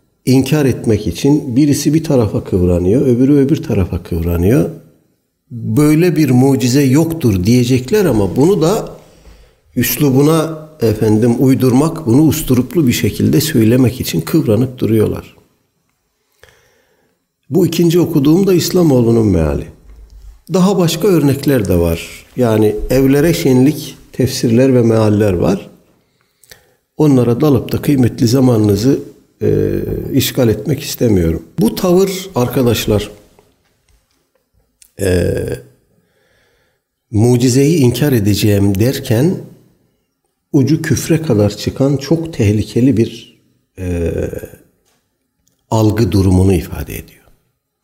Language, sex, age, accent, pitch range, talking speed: Turkish, male, 60-79, native, 105-140 Hz, 95 wpm